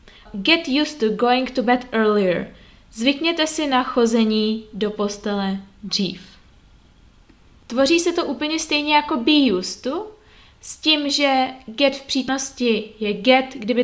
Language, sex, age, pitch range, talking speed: Czech, female, 20-39, 210-275 Hz, 140 wpm